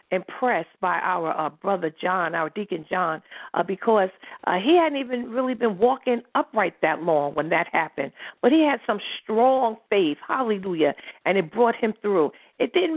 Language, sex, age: English, female, 50-69